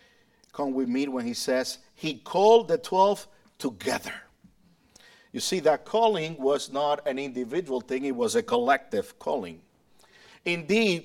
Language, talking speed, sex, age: English, 140 wpm, male, 50-69